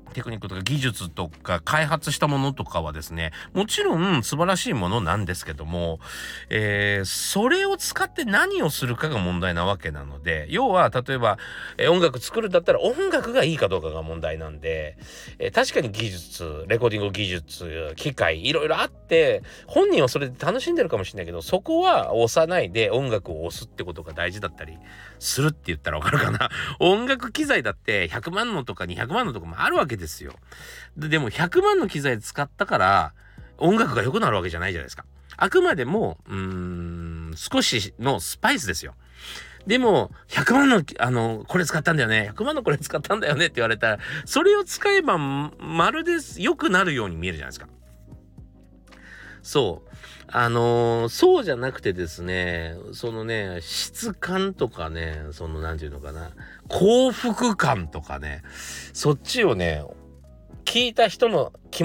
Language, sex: Japanese, male